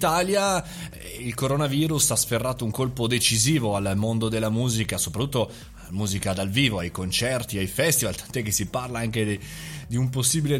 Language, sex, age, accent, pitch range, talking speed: Italian, male, 30-49, native, 110-150 Hz, 170 wpm